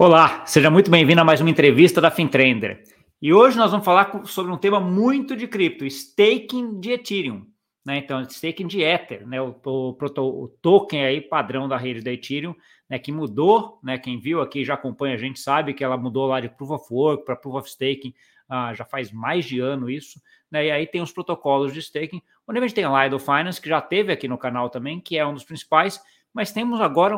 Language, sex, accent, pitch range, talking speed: Portuguese, male, Brazilian, 135-175 Hz, 225 wpm